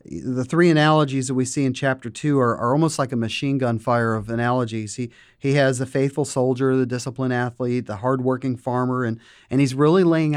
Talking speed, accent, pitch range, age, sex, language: 210 wpm, American, 120-145 Hz, 30-49, male, English